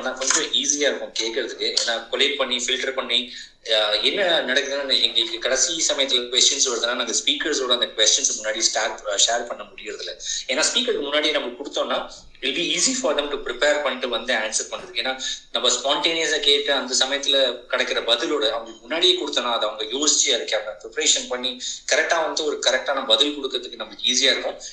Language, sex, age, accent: Tamil, male, 20-39, native